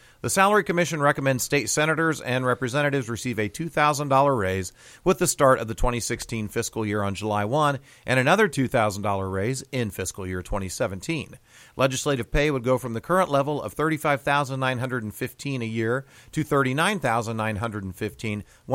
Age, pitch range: 40-59, 110-145 Hz